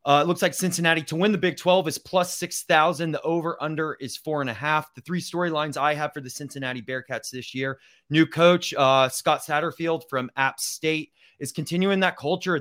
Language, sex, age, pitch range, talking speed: English, male, 30-49, 135-165 Hz, 210 wpm